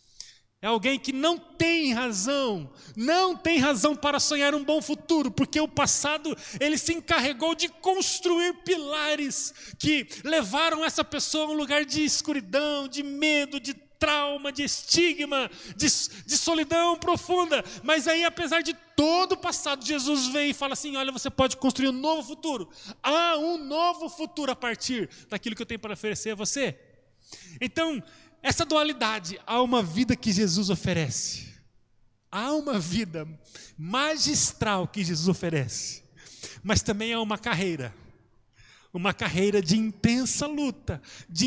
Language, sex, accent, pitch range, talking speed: Portuguese, male, Brazilian, 190-300 Hz, 150 wpm